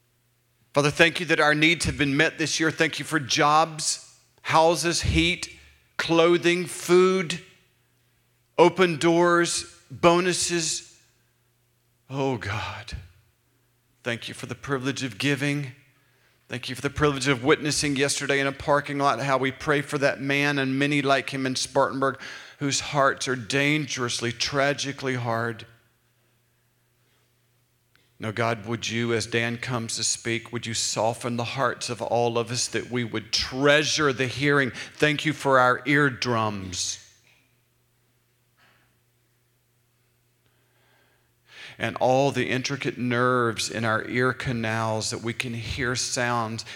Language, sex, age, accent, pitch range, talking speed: English, male, 40-59, American, 115-140 Hz, 135 wpm